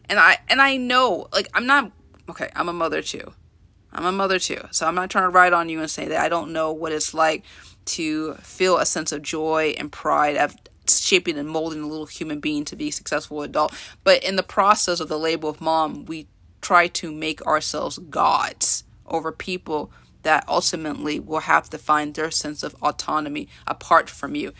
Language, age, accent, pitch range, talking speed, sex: English, 30-49, American, 160-235 Hz, 205 wpm, female